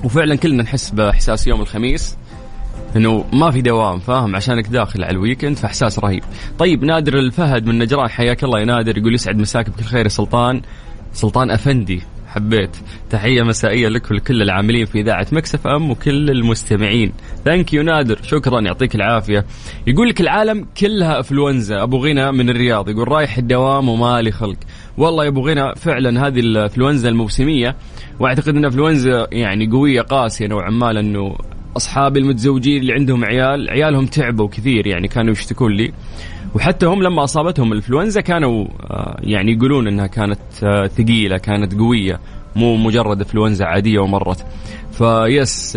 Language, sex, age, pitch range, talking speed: English, male, 20-39, 105-135 Hz, 140 wpm